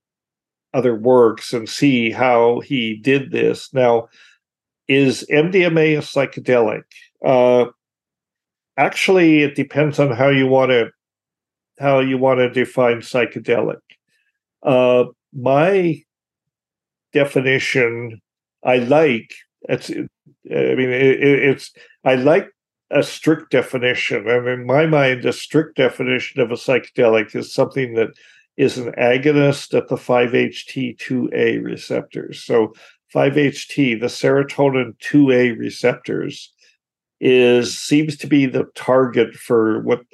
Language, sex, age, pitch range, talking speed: English, male, 50-69, 120-140 Hz, 120 wpm